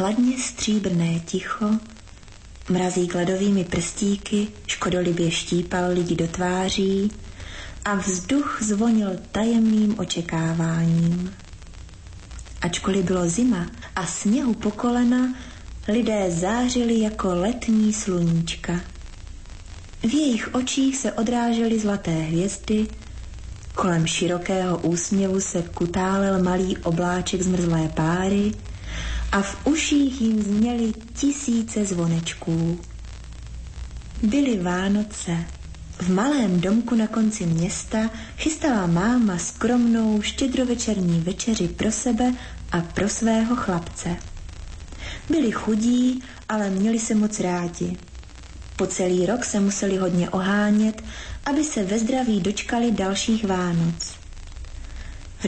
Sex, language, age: female, Slovak, 30-49